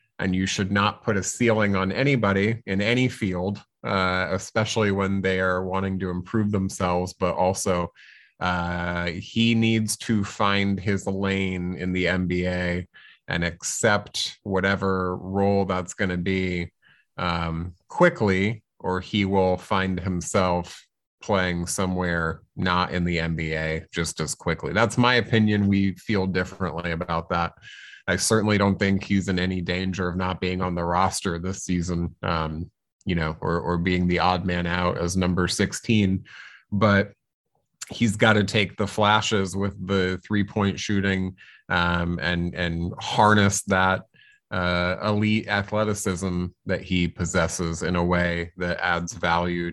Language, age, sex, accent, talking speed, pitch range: English, 30-49, male, American, 145 wpm, 90-100 Hz